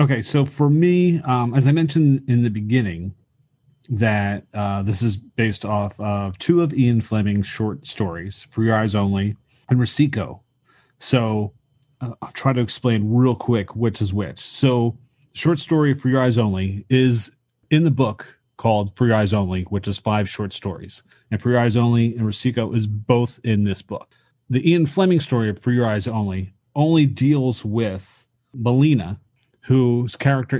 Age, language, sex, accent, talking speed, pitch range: 30-49, English, male, American, 175 wpm, 105-130 Hz